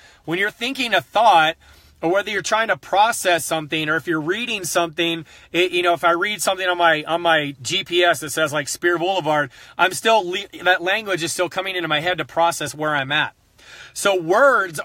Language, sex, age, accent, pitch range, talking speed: English, male, 30-49, American, 150-185 Hz, 210 wpm